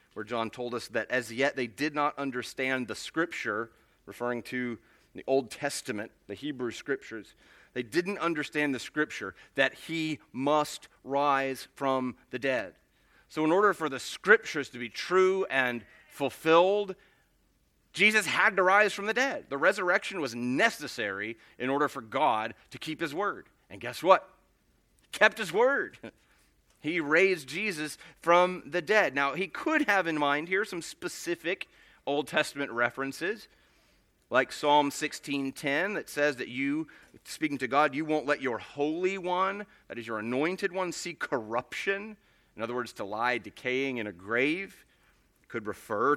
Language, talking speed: English, 160 wpm